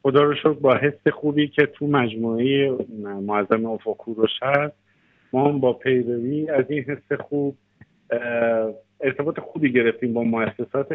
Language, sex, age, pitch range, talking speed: Persian, male, 50-69, 115-135 Hz, 130 wpm